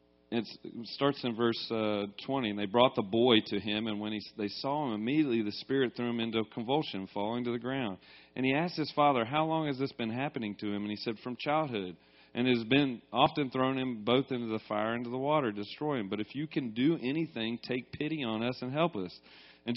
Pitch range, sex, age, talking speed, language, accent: 95-130 Hz, male, 40-59, 245 wpm, English, American